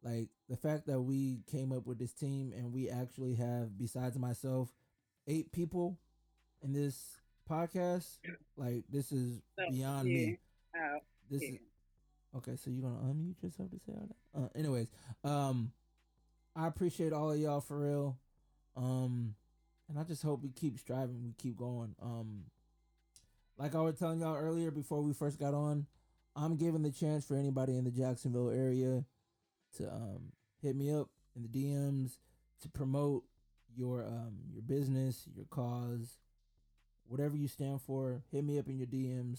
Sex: male